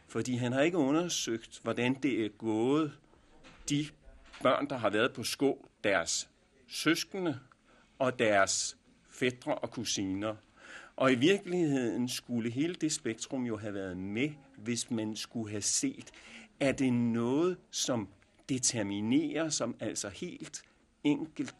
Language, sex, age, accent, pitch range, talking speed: Danish, male, 60-79, native, 110-155 Hz, 135 wpm